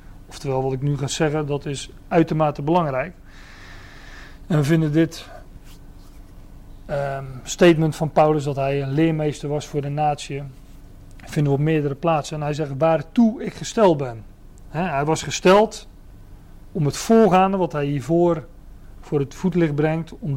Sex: male